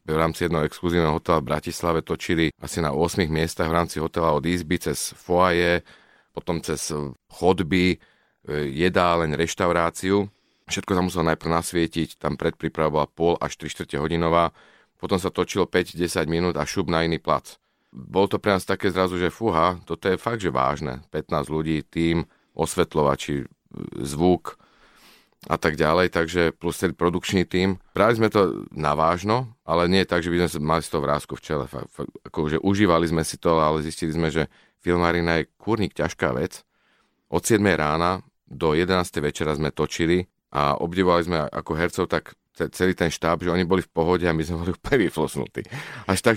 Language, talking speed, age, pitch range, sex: Slovak, 175 wpm, 40-59, 80-90 Hz, male